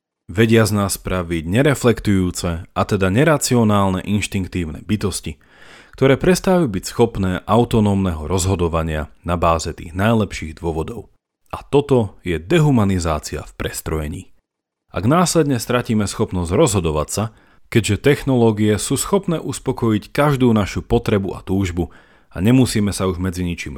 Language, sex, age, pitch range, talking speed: Slovak, male, 40-59, 85-120 Hz, 125 wpm